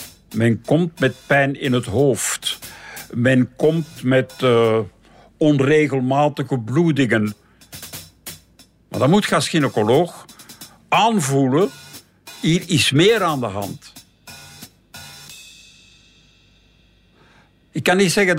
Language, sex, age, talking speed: Dutch, male, 60-79, 95 wpm